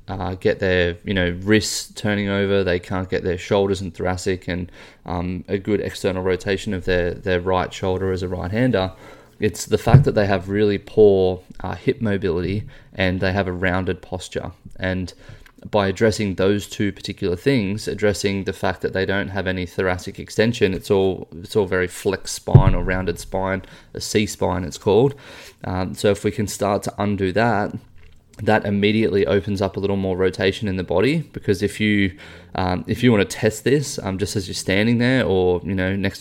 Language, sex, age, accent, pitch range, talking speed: English, male, 20-39, Australian, 95-105 Hz, 195 wpm